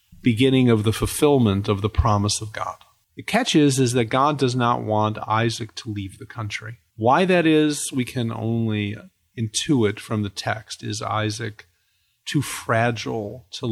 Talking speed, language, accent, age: 165 wpm, English, American, 40-59